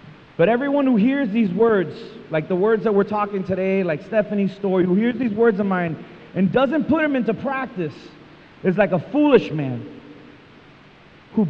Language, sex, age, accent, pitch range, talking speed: English, male, 30-49, American, 185-275 Hz, 175 wpm